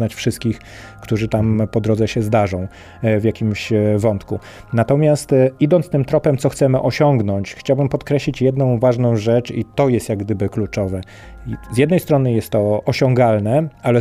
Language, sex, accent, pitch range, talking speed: Polish, male, native, 110-145 Hz, 150 wpm